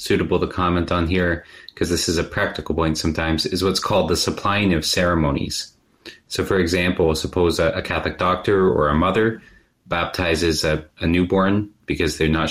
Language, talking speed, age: English, 175 wpm, 30-49